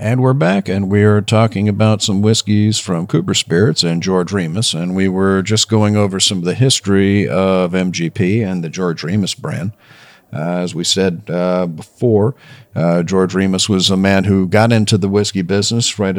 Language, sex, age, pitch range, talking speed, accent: English, male, 50-69, 90-110 Hz, 190 wpm, American